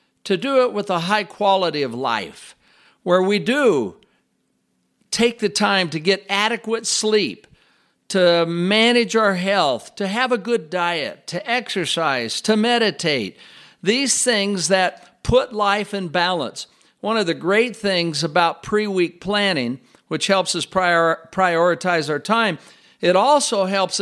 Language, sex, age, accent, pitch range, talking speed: English, male, 50-69, American, 175-215 Hz, 140 wpm